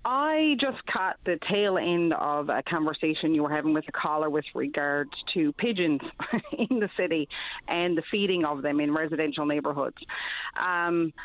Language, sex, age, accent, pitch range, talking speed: English, female, 40-59, American, 150-185 Hz, 165 wpm